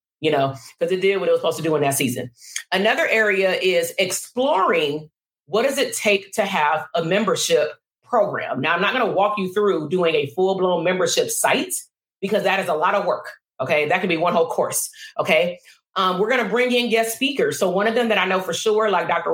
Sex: female